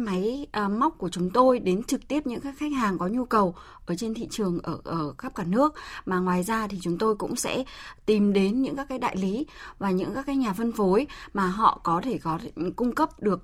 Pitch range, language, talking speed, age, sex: 185-245 Hz, Vietnamese, 245 wpm, 20-39, female